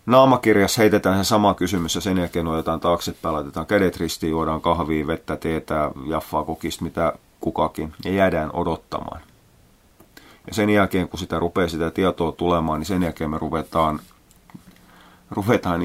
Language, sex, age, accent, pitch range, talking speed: Finnish, male, 30-49, native, 80-100 Hz, 150 wpm